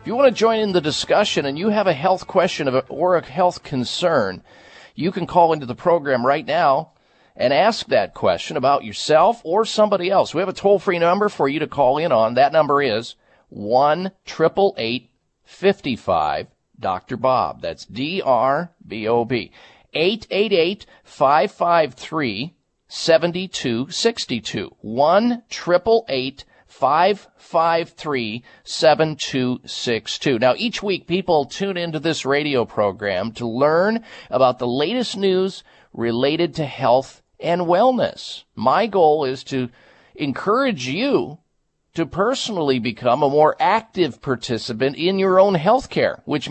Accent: American